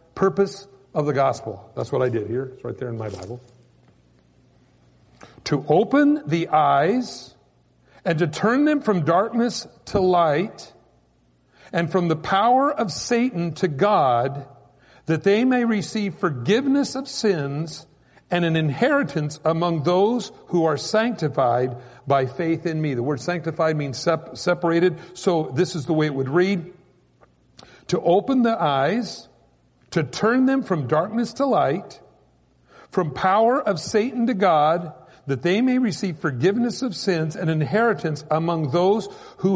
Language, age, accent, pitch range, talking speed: English, 50-69, American, 145-205 Hz, 145 wpm